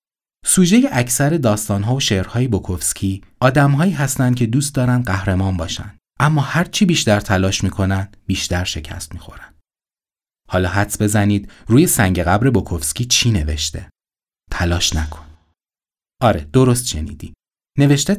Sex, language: male, Persian